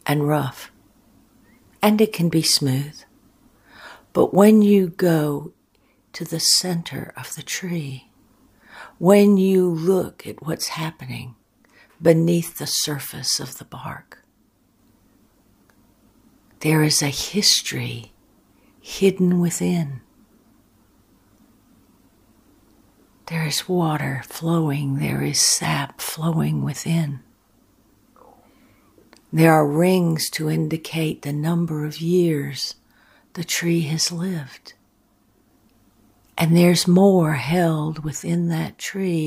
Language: English